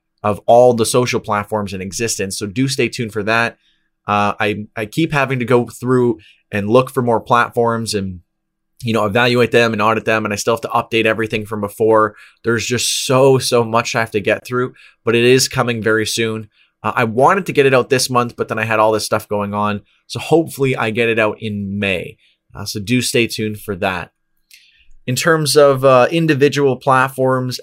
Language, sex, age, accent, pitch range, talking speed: English, male, 20-39, American, 105-125 Hz, 215 wpm